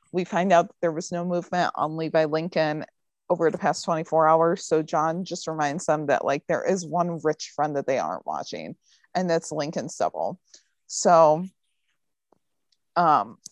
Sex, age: female, 30-49